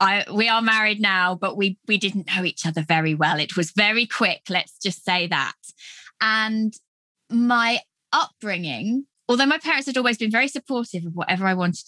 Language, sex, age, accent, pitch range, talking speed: English, female, 20-39, British, 190-265 Hz, 185 wpm